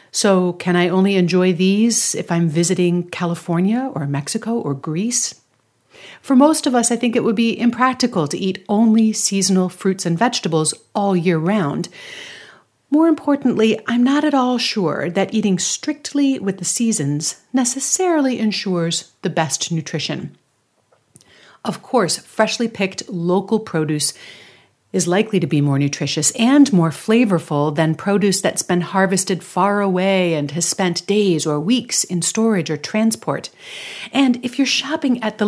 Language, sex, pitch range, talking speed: English, female, 180-245 Hz, 150 wpm